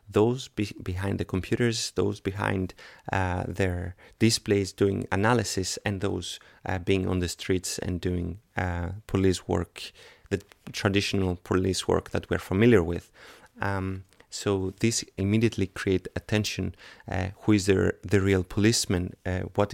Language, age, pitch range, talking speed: Danish, 30-49, 95-110 Hz, 140 wpm